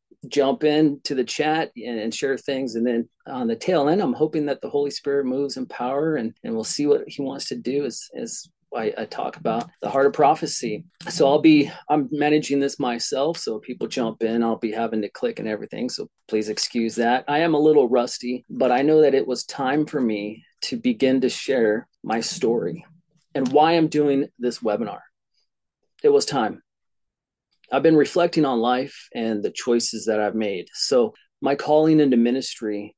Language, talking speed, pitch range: English, 200 wpm, 115-150 Hz